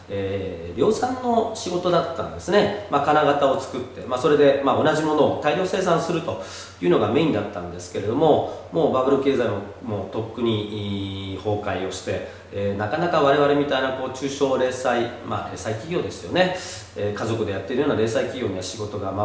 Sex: male